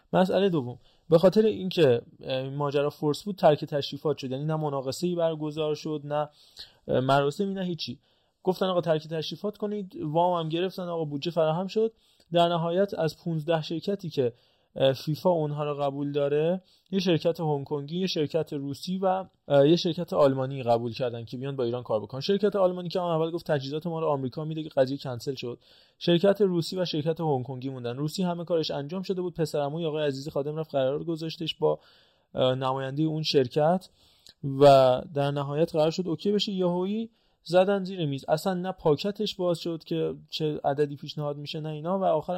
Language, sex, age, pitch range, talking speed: Persian, male, 30-49, 140-175 Hz, 180 wpm